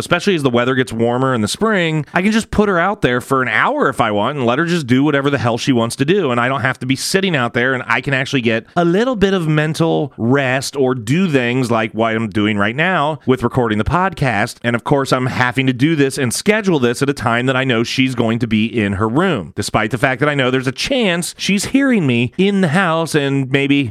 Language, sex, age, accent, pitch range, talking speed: English, male, 30-49, American, 120-160 Hz, 270 wpm